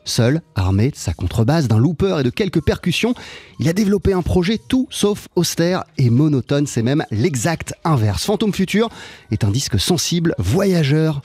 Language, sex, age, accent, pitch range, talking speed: French, male, 30-49, French, 130-195 Hz, 170 wpm